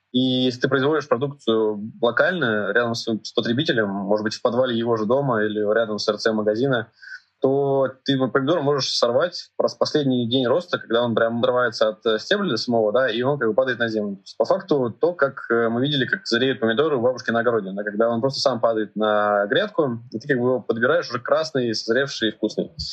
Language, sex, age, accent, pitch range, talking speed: Russian, male, 20-39, native, 110-130 Hz, 200 wpm